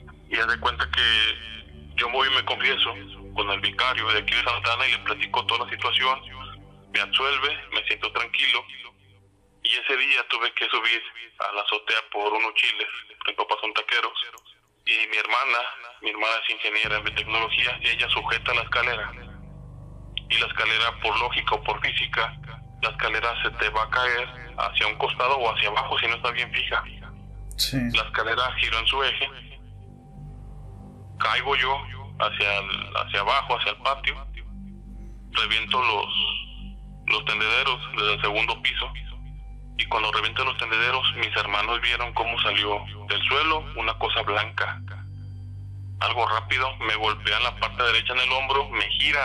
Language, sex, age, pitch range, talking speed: Spanish, male, 20-39, 100-120 Hz, 160 wpm